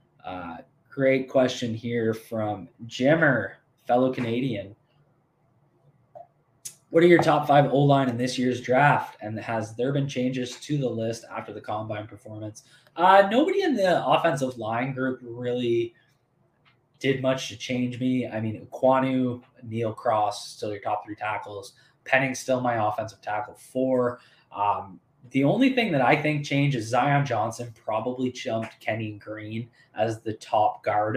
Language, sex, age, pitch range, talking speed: English, male, 20-39, 110-135 Hz, 145 wpm